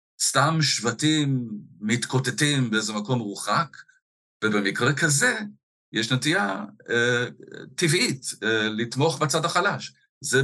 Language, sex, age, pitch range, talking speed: Hebrew, male, 50-69, 110-140 Hz, 100 wpm